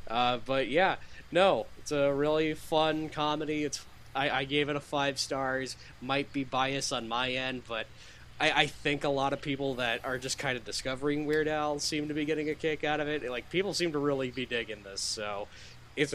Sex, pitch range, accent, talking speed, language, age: male, 120-150 Hz, American, 215 wpm, English, 10-29